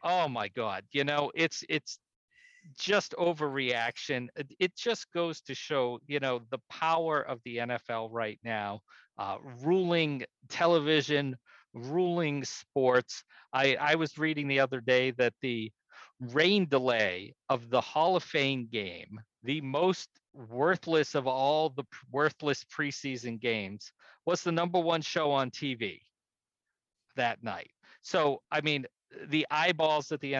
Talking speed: 140 wpm